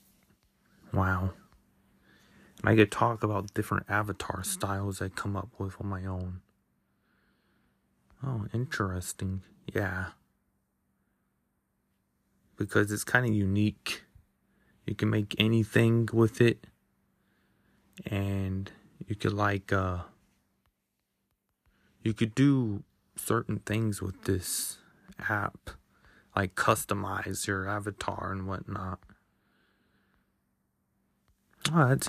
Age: 20-39